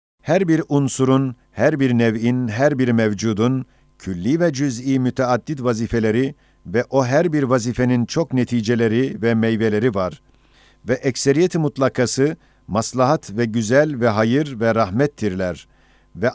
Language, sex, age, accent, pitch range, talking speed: Turkish, male, 50-69, native, 115-140 Hz, 130 wpm